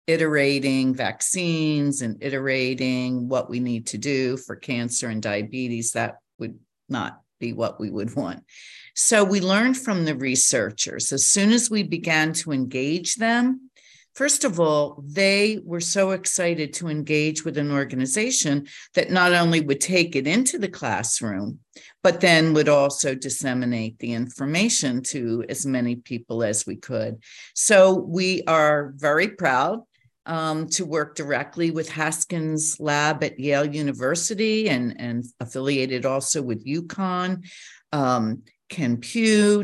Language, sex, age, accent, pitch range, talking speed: English, female, 50-69, American, 135-180 Hz, 140 wpm